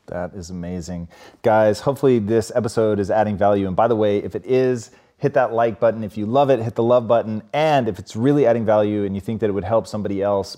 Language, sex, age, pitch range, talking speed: English, male, 30-49, 105-135 Hz, 250 wpm